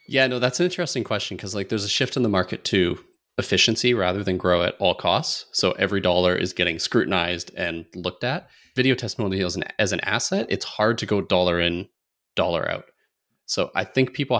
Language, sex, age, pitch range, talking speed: English, male, 30-49, 90-110 Hz, 210 wpm